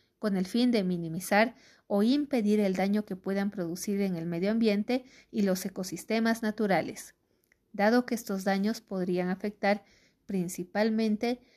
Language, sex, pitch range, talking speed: Spanish, female, 190-235 Hz, 140 wpm